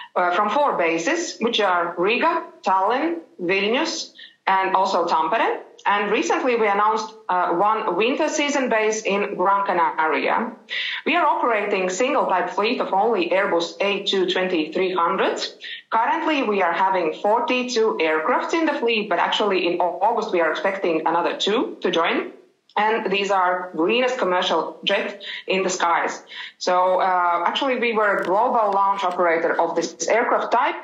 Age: 20-39